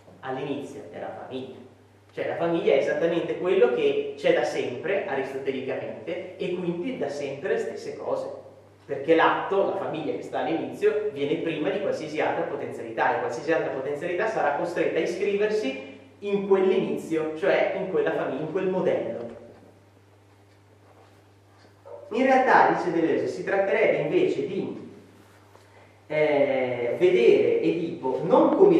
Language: Italian